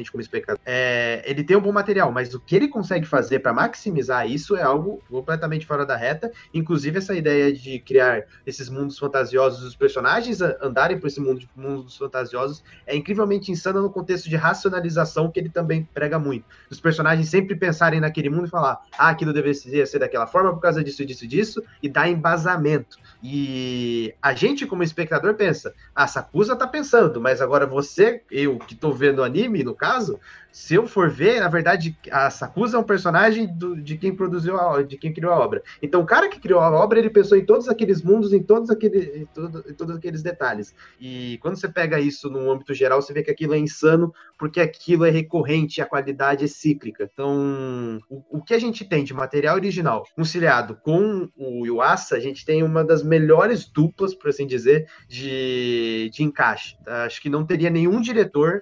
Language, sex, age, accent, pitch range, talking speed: Portuguese, male, 20-39, Brazilian, 140-185 Hz, 200 wpm